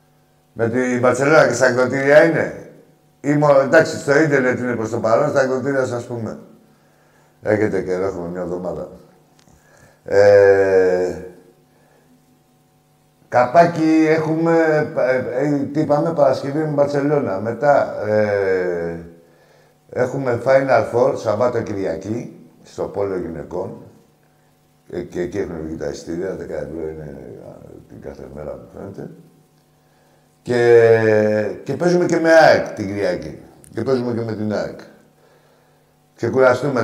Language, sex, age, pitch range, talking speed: Greek, male, 60-79, 105-145 Hz, 120 wpm